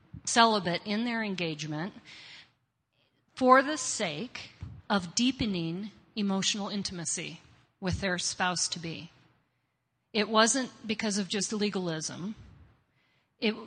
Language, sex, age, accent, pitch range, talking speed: English, female, 40-59, American, 170-220 Hz, 90 wpm